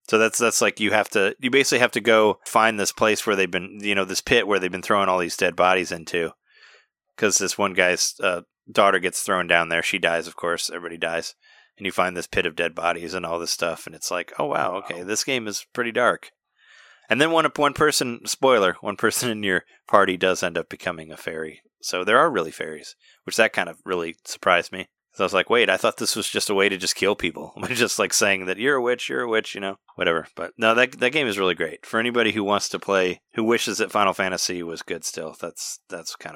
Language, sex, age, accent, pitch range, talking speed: English, male, 30-49, American, 95-120 Hz, 250 wpm